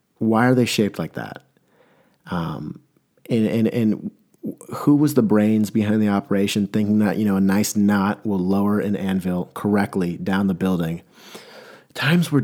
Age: 30-49